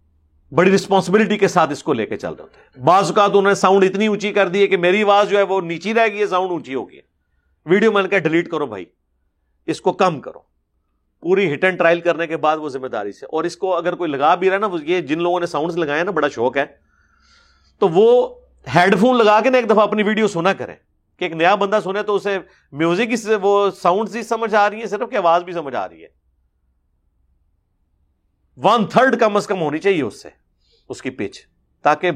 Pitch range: 125-195 Hz